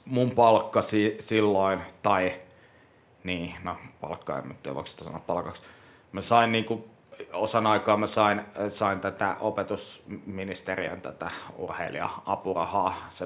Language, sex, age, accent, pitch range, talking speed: Finnish, male, 30-49, native, 95-115 Hz, 120 wpm